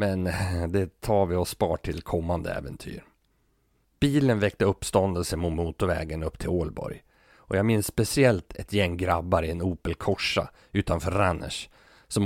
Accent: native